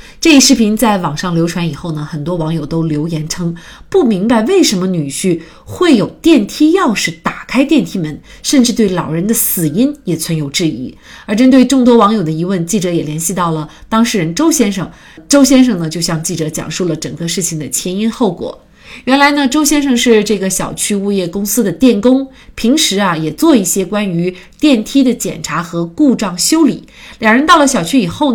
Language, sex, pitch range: Chinese, female, 175-260 Hz